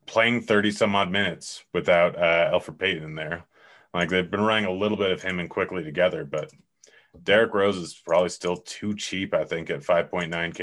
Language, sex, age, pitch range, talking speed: English, male, 30-49, 85-100 Hz, 200 wpm